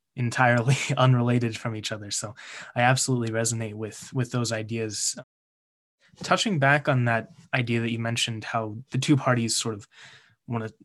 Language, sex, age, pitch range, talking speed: English, male, 20-39, 115-130 Hz, 155 wpm